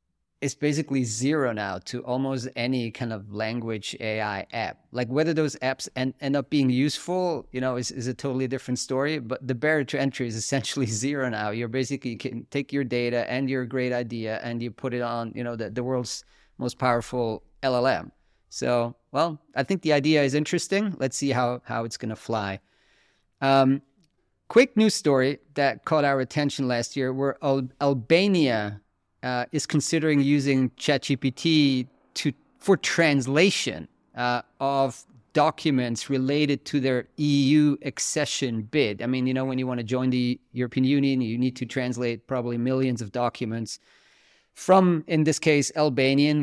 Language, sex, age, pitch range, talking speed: English, male, 30-49, 120-145 Hz, 170 wpm